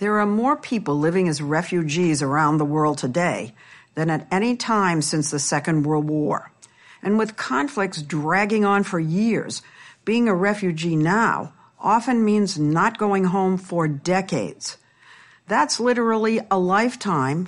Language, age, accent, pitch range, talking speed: English, 60-79, American, 155-210 Hz, 145 wpm